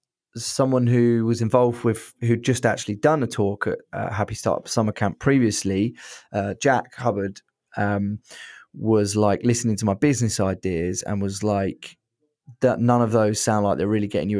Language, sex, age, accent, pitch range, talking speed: English, male, 20-39, British, 100-120 Hz, 175 wpm